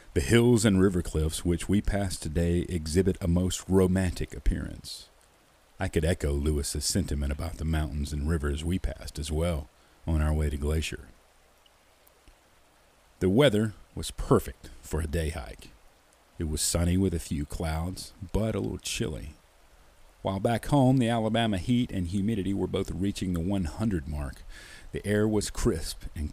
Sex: male